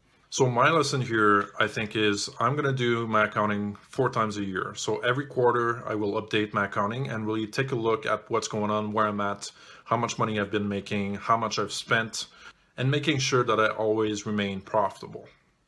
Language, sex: English, male